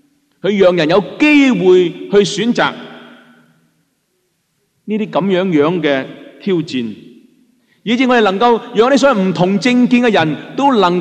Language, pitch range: Chinese, 135-210 Hz